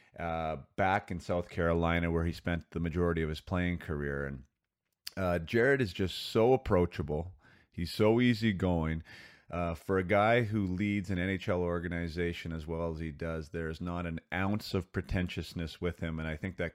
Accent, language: American, English